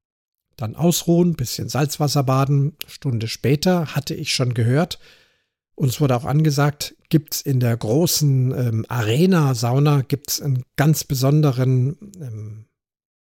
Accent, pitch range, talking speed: German, 125-150 Hz, 125 wpm